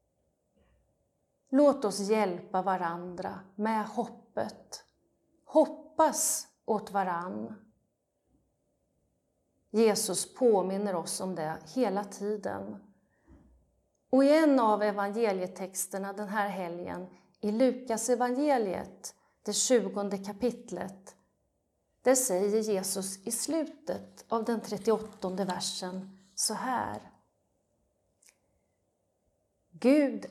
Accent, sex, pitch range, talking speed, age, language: native, female, 190-255 Hz, 85 wpm, 30-49, Swedish